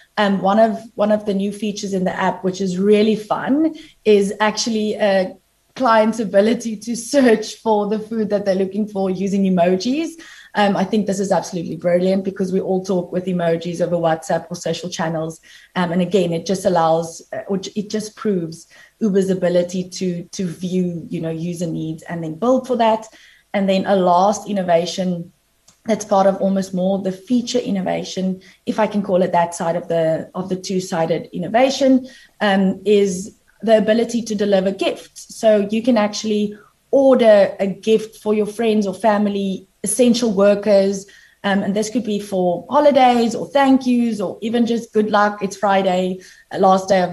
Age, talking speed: 20-39, 180 wpm